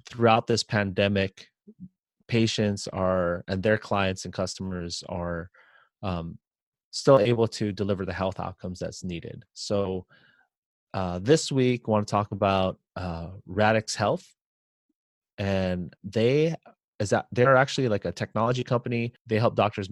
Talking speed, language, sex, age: 140 wpm, English, male, 30-49